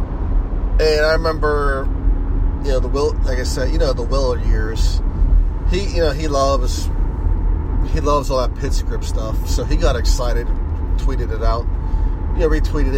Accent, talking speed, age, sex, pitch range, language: American, 170 wpm, 30-49, male, 75-90 Hz, English